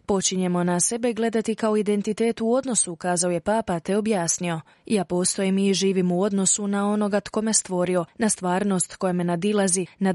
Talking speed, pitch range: 175 wpm, 180-215 Hz